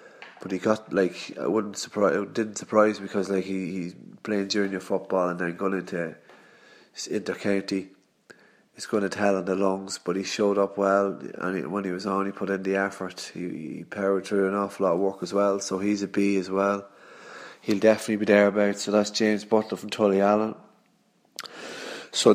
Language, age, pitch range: English, 30-49, 95-110 Hz